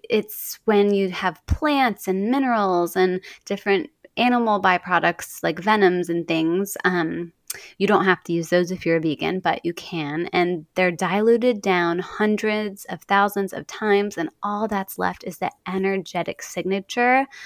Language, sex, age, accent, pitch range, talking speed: English, female, 20-39, American, 175-205 Hz, 160 wpm